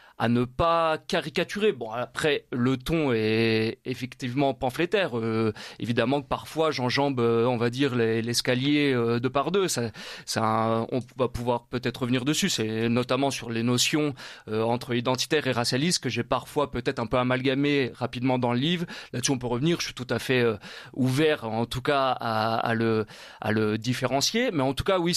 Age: 30-49